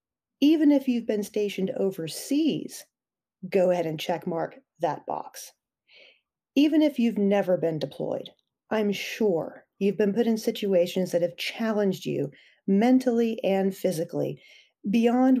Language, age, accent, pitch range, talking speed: English, 40-59, American, 175-235 Hz, 130 wpm